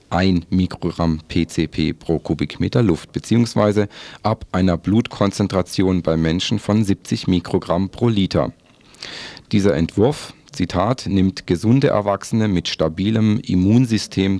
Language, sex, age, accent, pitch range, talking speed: German, male, 40-59, German, 85-105 Hz, 110 wpm